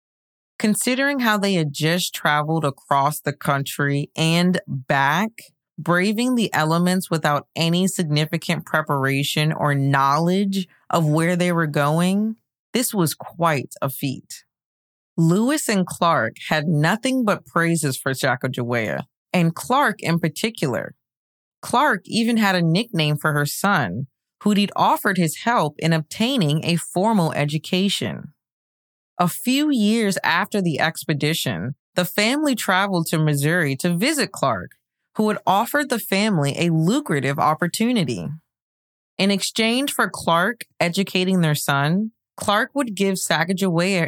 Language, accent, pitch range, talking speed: English, American, 150-205 Hz, 130 wpm